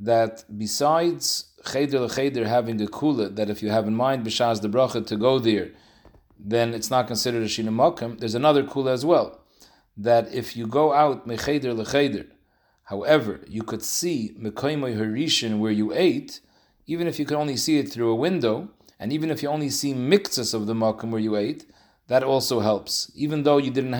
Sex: male